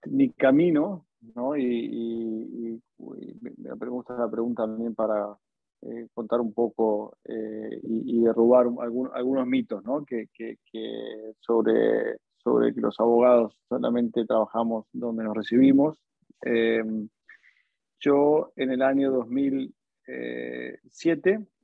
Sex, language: male, Spanish